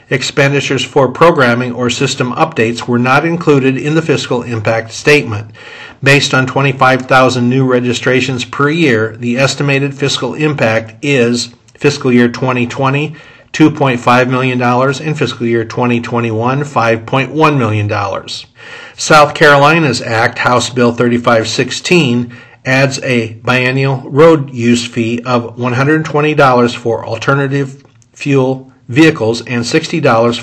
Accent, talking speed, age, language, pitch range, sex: American, 110 wpm, 50-69, English, 120-140 Hz, male